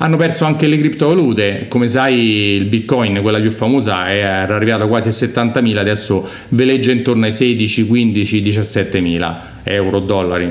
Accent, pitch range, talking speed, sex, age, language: native, 105-125 Hz, 155 wpm, male, 40-59, Italian